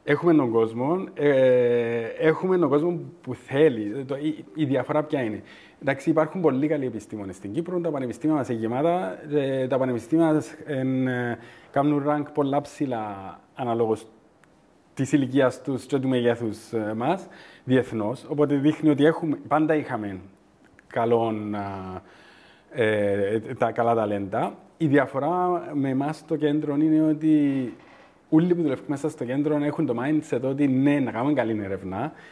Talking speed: 140 wpm